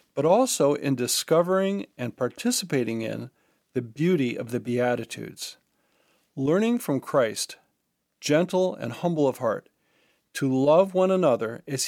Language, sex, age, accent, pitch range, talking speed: English, male, 40-59, American, 130-170 Hz, 125 wpm